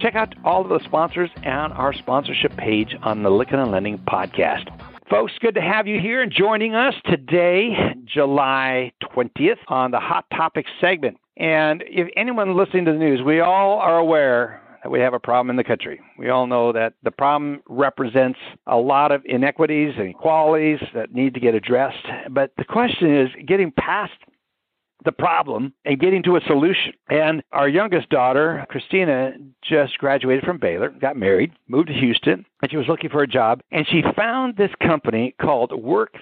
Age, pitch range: 60-79, 135-185 Hz